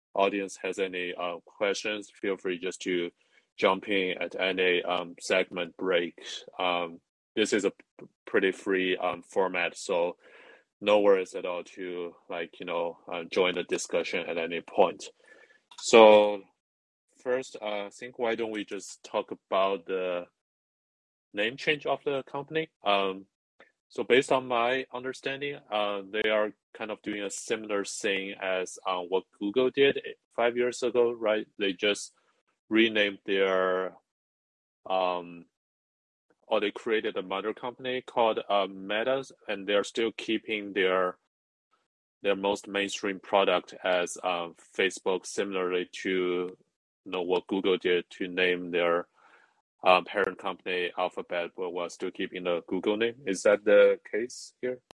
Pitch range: 90-125 Hz